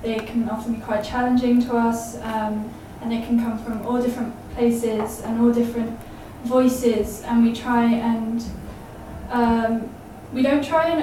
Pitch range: 225-245 Hz